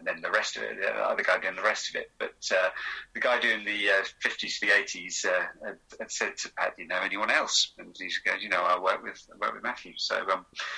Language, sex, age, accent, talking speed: English, male, 30-49, British, 275 wpm